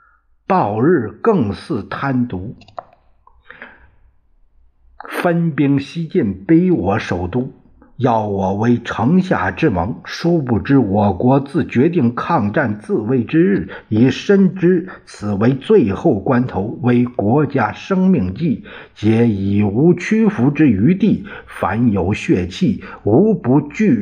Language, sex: Chinese, male